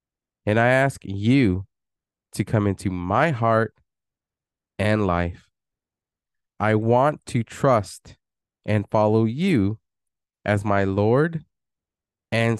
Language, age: English, 20-39